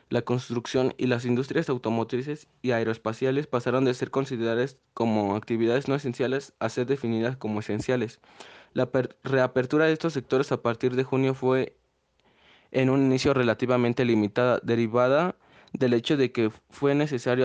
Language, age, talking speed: Spanish, 20-39, 150 wpm